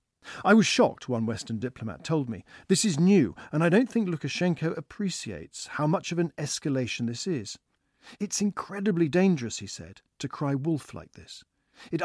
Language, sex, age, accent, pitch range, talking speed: English, male, 50-69, British, 120-175 Hz, 175 wpm